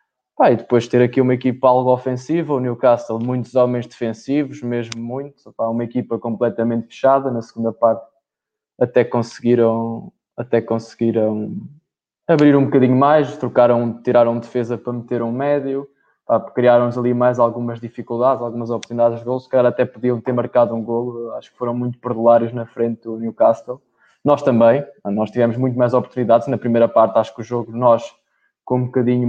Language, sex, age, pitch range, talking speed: Portuguese, male, 20-39, 115-125 Hz, 170 wpm